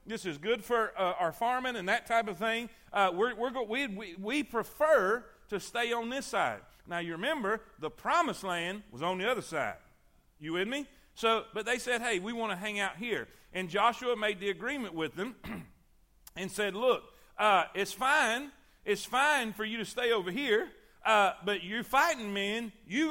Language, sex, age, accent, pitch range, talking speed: English, male, 40-59, American, 200-255 Hz, 200 wpm